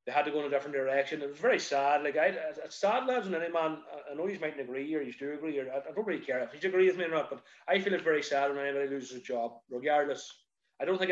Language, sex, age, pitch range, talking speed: English, male, 30-49, 125-155 Hz, 300 wpm